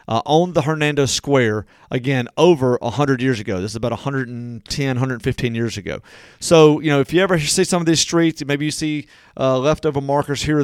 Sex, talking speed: male, 200 wpm